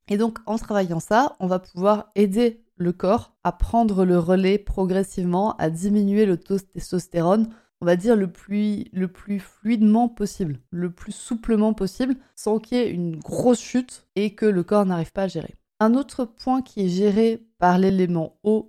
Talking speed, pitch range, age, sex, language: 190 wpm, 180-215 Hz, 20-39, female, French